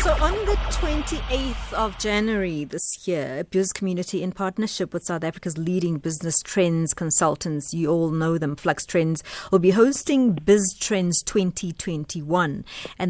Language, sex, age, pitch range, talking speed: English, female, 30-49, 160-200 Hz, 150 wpm